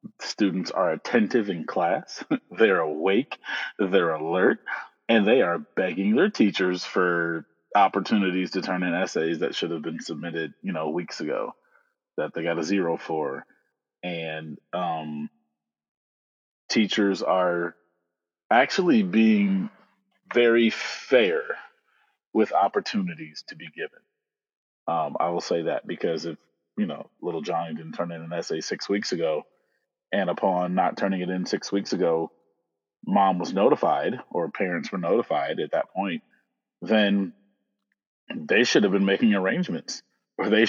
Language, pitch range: English, 85-115 Hz